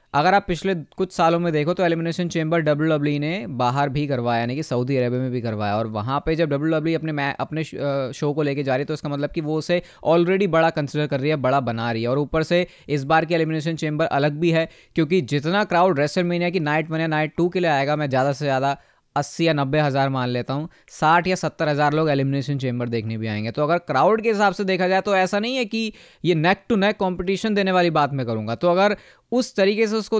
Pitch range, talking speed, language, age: 140-185 Hz, 245 wpm, Hindi, 20-39